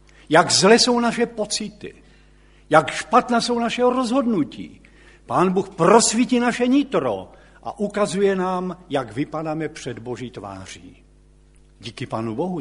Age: 70-89